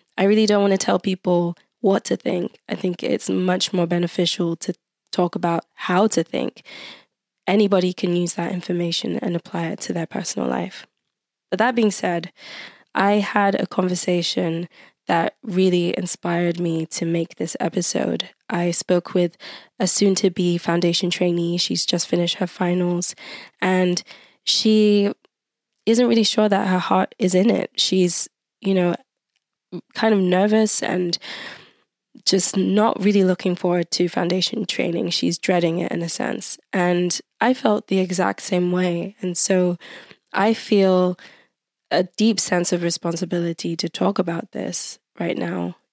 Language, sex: English, female